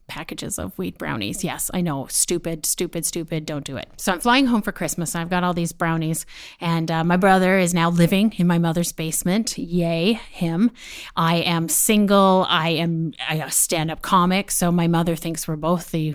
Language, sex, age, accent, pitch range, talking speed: English, female, 30-49, American, 165-200 Hz, 200 wpm